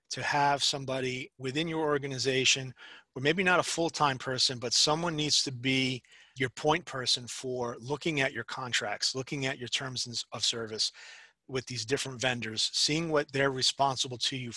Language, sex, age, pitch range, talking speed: English, male, 30-49, 125-145 Hz, 170 wpm